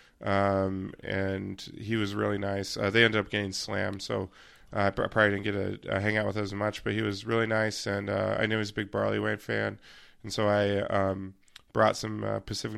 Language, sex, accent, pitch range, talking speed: English, male, American, 100-115 Hz, 230 wpm